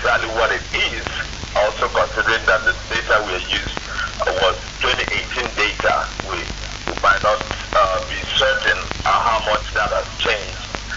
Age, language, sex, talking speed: 50-69, English, male, 140 wpm